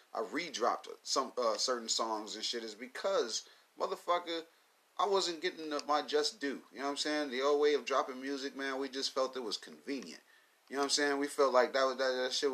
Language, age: English, 30-49